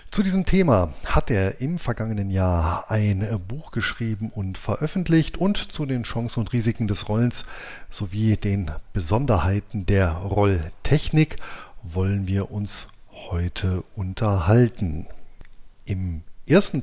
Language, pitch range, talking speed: German, 95-120 Hz, 120 wpm